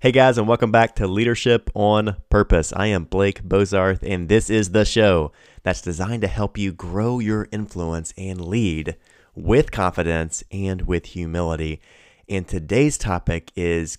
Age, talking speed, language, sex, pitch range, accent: 30-49, 160 wpm, English, male, 85-105 Hz, American